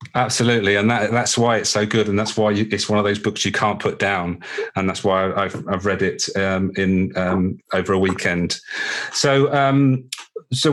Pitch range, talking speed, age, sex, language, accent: 95-110 Hz, 195 wpm, 40-59, male, English, British